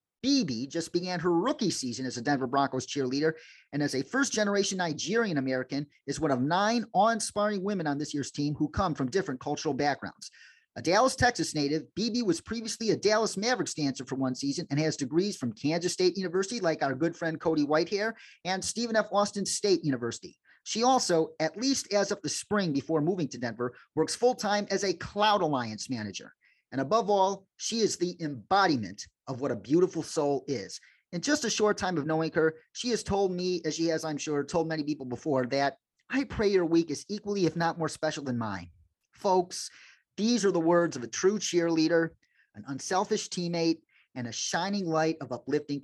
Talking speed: 195 wpm